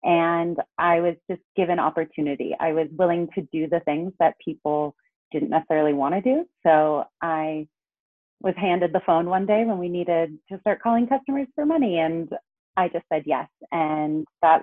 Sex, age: female, 30-49